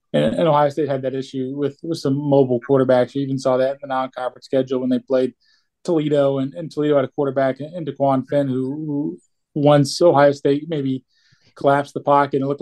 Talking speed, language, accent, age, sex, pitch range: 210 wpm, English, American, 20-39, male, 130-150 Hz